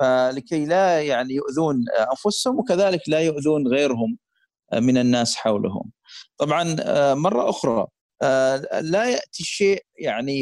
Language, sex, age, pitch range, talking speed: Arabic, male, 50-69, 130-185 Hz, 110 wpm